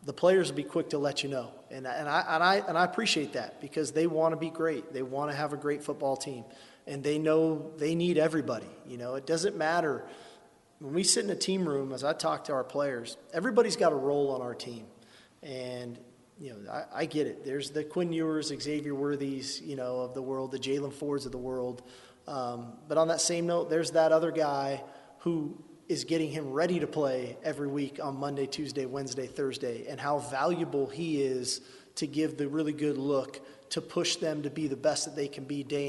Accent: American